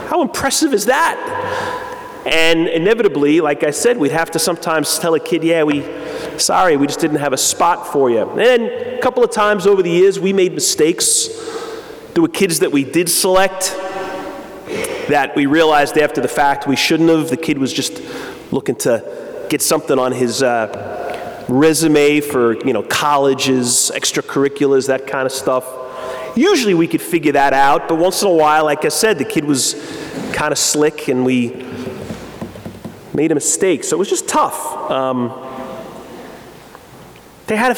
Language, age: English, 30-49